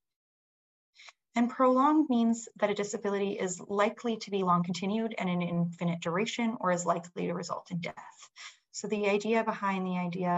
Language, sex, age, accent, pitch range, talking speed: English, female, 20-39, American, 175-220 Hz, 175 wpm